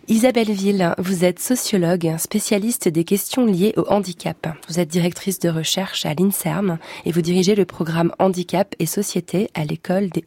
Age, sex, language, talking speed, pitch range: 20-39, female, French, 170 wpm, 170-205 Hz